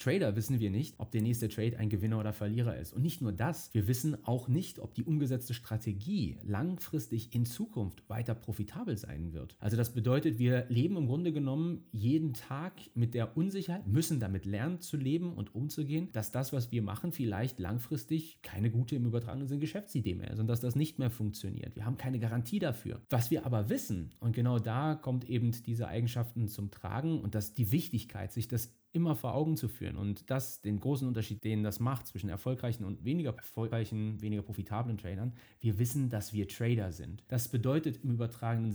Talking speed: 195 wpm